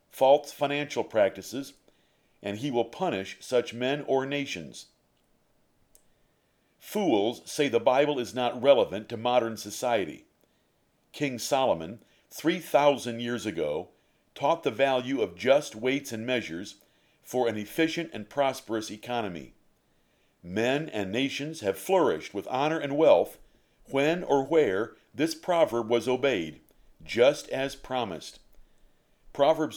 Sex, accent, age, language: male, American, 50-69, English